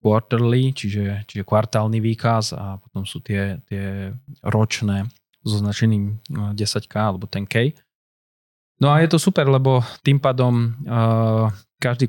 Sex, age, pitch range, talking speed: male, 20-39, 105-120 Hz, 125 wpm